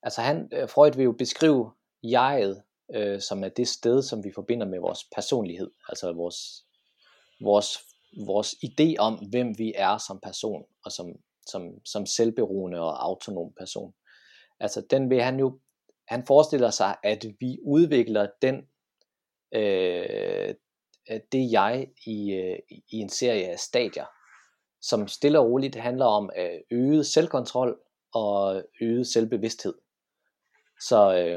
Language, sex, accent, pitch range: Danish, male, native, 105-135 Hz